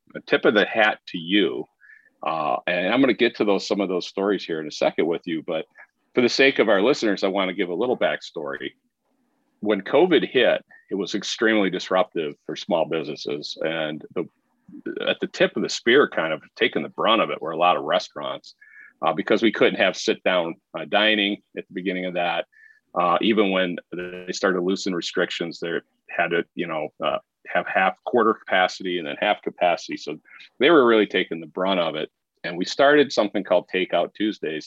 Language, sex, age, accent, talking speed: English, male, 40-59, American, 205 wpm